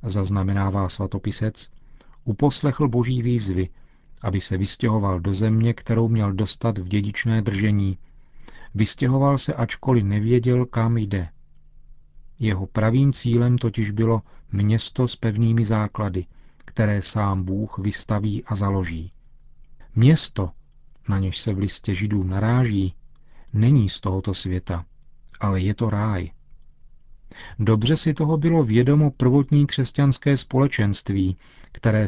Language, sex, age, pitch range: Czech, male, 40-59, 100-125 Hz